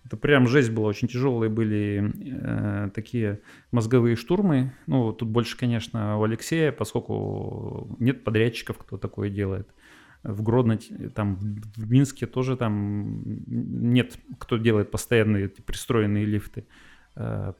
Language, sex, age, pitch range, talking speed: Russian, male, 30-49, 105-125 Hz, 125 wpm